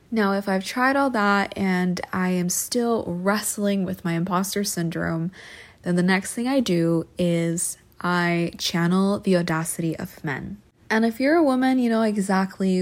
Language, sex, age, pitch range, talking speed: English, female, 20-39, 175-210 Hz, 170 wpm